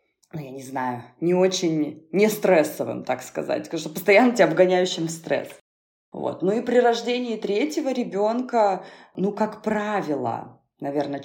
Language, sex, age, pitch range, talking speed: Russian, female, 20-39, 150-210 Hz, 145 wpm